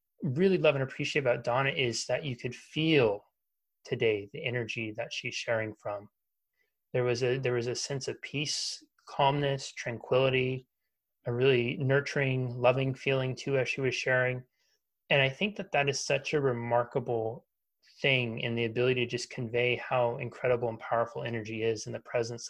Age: 30-49